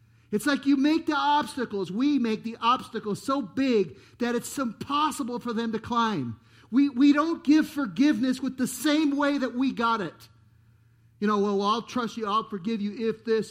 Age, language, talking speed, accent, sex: 50-69, English, 190 wpm, American, male